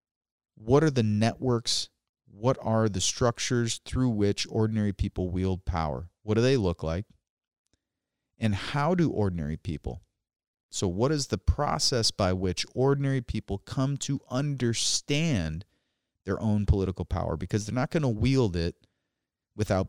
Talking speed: 145 wpm